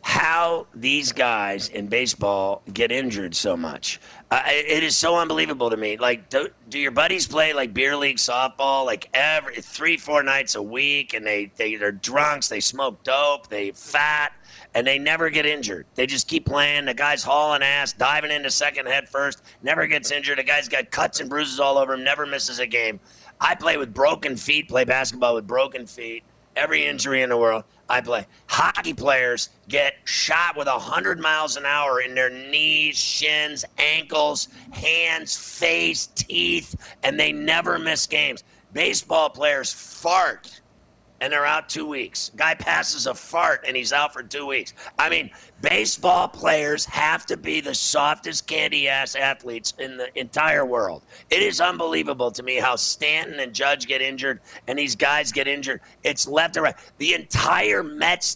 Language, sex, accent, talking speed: English, male, American, 175 wpm